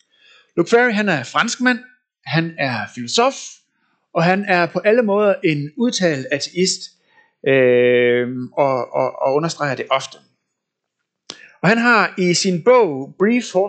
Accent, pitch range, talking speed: native, 160-235 Hz, 135 wpm